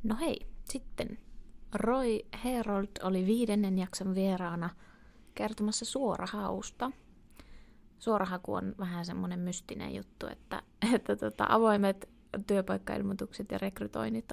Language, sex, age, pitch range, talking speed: Finnish, female, 20-39, 185-220 Hz, 100 wpm